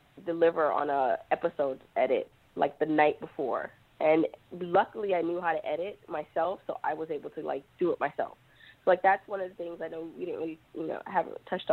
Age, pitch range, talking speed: 20-39, 145-180 Hz, 215 wpm